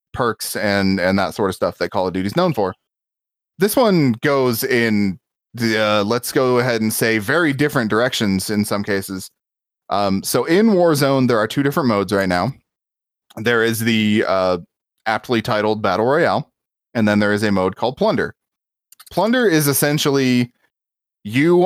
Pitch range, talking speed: 105-130 Hz, 170 wpm